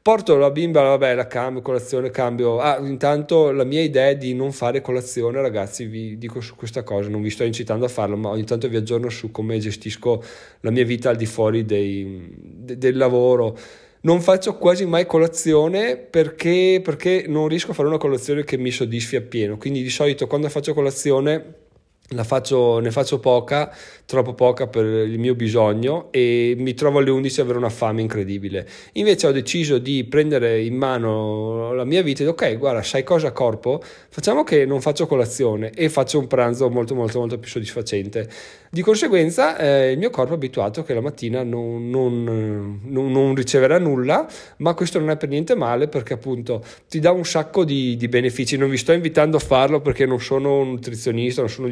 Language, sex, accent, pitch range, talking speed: Italian, male, native, 115-145 Hz, 195 wpm